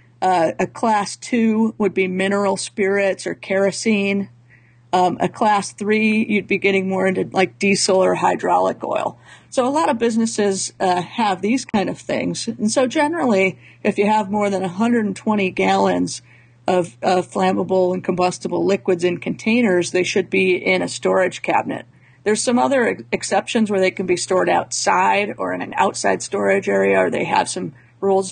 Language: English